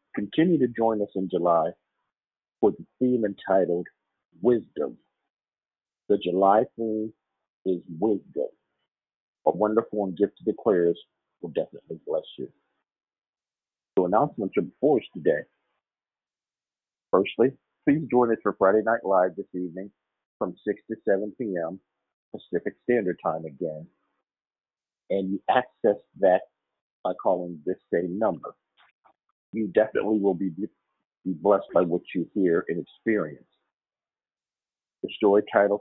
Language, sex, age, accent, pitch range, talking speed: English, male, 50-69, American, 90-115 Hz, 125 wpm